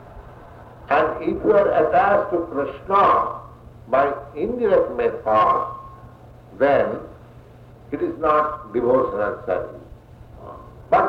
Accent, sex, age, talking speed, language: Indian, male, 60-79, 90 wpm, English